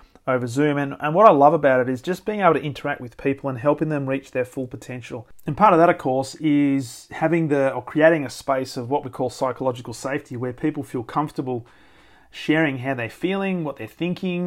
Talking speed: 225 wpm